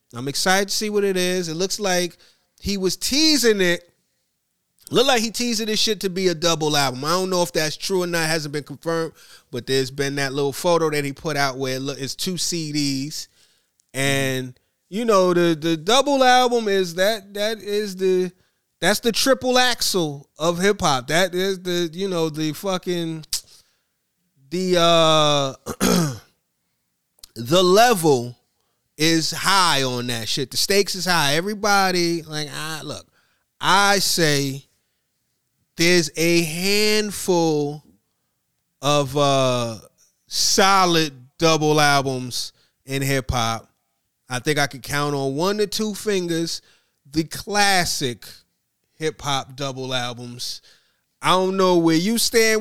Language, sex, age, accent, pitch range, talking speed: English, male, 30-49, American, 140-190 Hz, 150 wpm